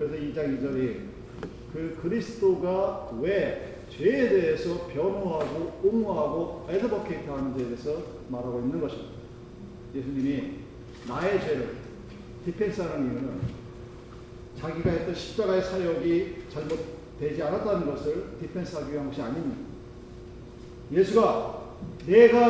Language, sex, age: Korean, male, 40-59